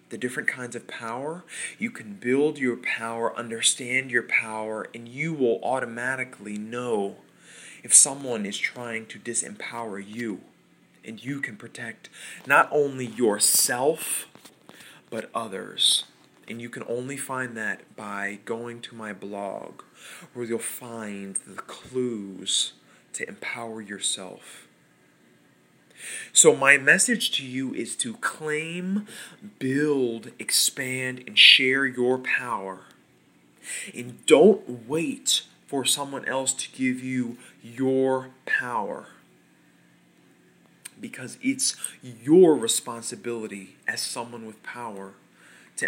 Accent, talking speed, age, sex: American, 115 wpm, 20-39, male